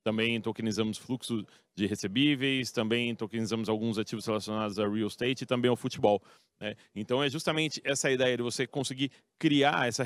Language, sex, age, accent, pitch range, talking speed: Portuguese, male, 30-49, Brazilian, 115-140 Hz, 165 wpm